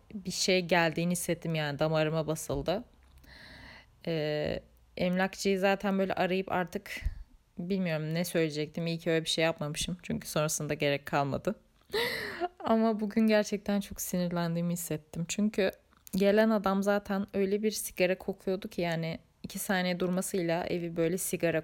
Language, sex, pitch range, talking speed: Turkish, female, 160-205 Hz, 135 wpm